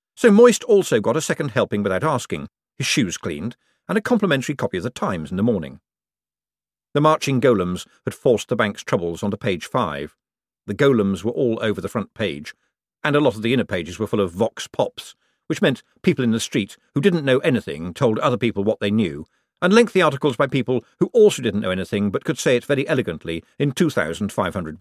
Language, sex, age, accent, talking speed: English, male, 50-69, British, 210 wpm